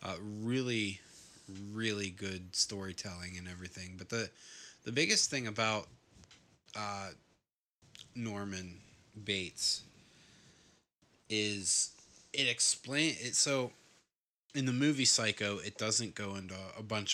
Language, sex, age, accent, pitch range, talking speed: English, male, 20-39, American, 95-110 Hz, 110 wpm